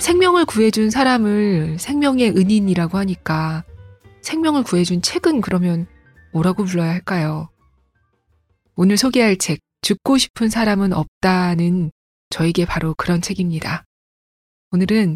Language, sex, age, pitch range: Korean, female, 20-39, 170-225 Hz